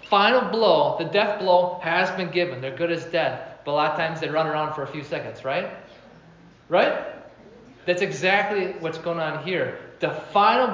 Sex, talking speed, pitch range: male, 190 wpm, 155-205 Hz